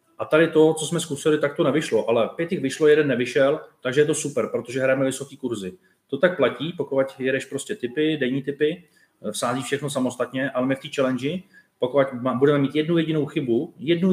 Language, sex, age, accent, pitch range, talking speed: Czech, male, 30-49, native, 115-145 Hz, 200 wpm